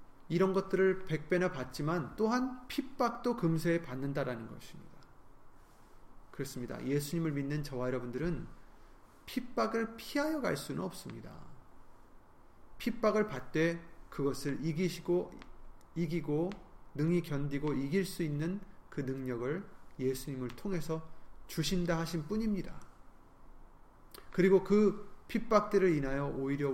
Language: Korean